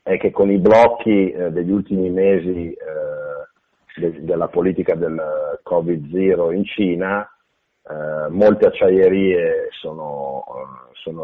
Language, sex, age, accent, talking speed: Italian, male, 40-59, native, 95 wpm